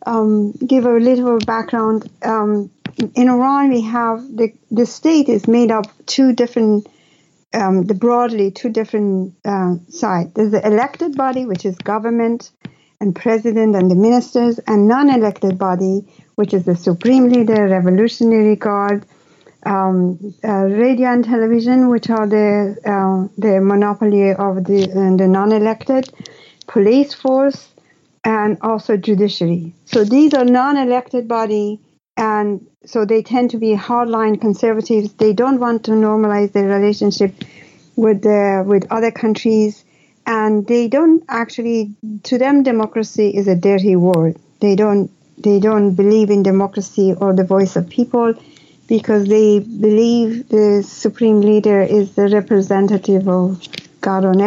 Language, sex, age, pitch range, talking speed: English, female, 60-79, 200-230 Hz, 140 wpm